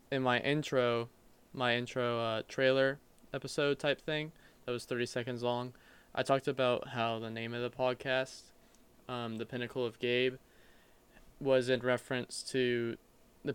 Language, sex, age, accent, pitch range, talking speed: English, male, 20-39, American, 125-140 Hz, 150 wpm